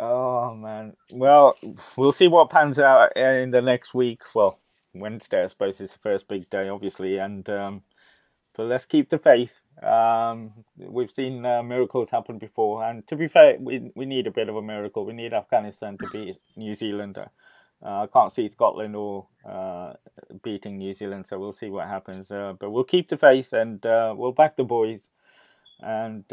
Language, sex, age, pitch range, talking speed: English, male, 20-39, 105-130 Hz, 190 wpm